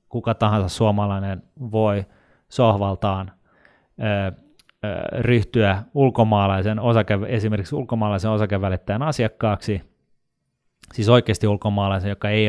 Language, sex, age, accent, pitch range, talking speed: Finnish, male, 30-49, native, 100-120 Hz, 90 wpm